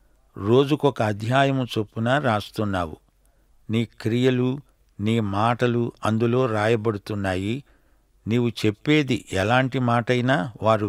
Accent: native